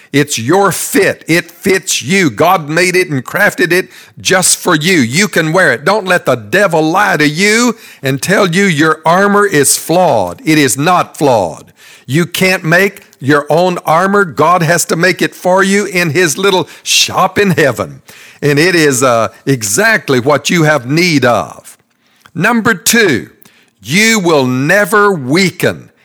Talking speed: 165 wpm